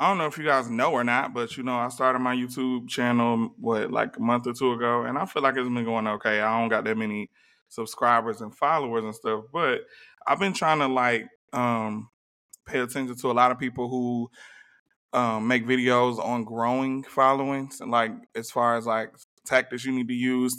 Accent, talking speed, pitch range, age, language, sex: American, 215 wpm, 115-130 Hz, 20-39, English, male